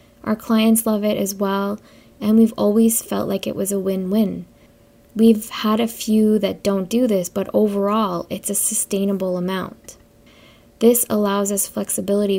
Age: 20-39